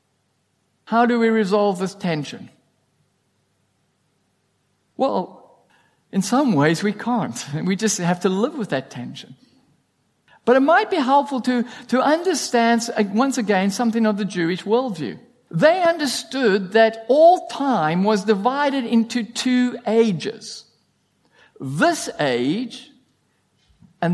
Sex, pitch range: male, 190-250 Hz